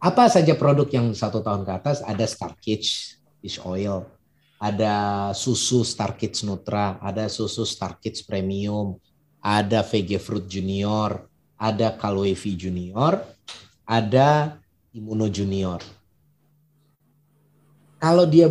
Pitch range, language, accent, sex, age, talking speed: 110-160 Hz, Indonesian, native, male, 30-49, 105 wpm